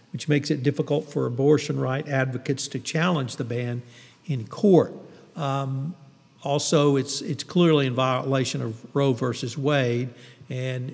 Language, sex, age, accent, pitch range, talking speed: English, male, 50-69, American, 135-160 Hz, 145 wpm